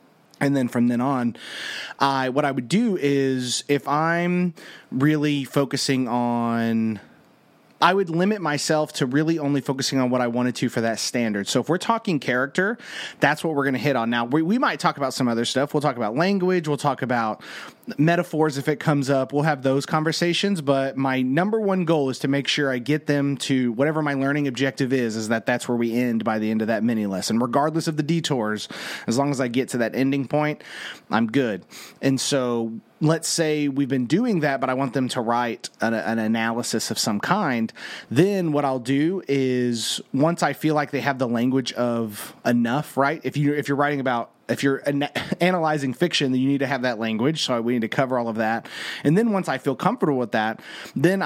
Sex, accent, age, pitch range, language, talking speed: male, American, 30-49, 125-155 Hz, English, 220 wpm